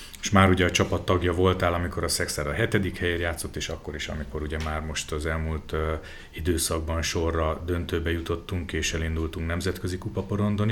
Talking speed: 175 wpm